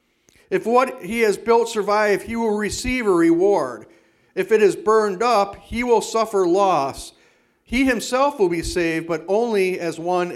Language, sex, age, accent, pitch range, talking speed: English, male, 50-69, American, 165-215 Hz, 170 wpm